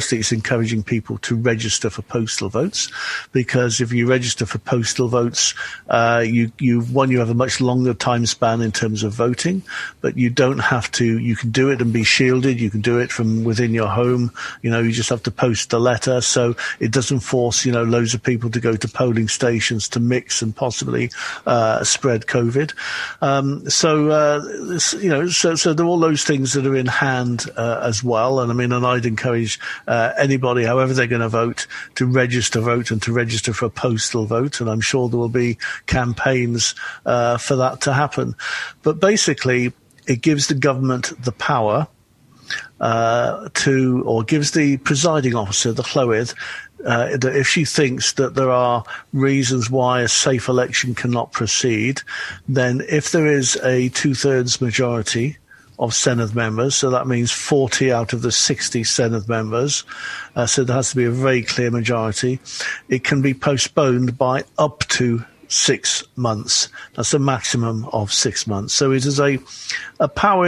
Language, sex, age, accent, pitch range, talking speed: English, male, 50-69, British, 115-135 Hz, 185 wpm